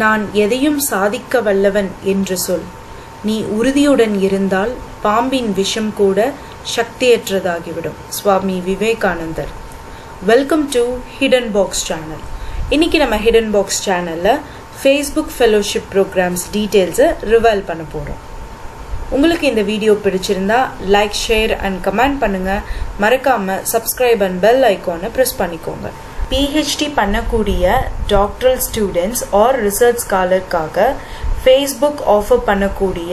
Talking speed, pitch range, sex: 105 wpm, 195-260 Hz, female